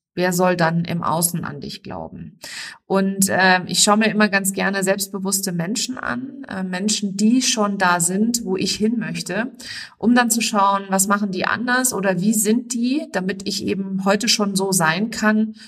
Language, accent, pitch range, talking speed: German, German, 180-220 Hz, 190 wpm